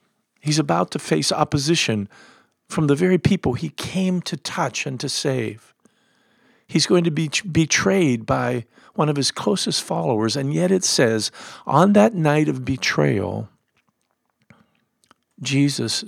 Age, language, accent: 50-69, English, American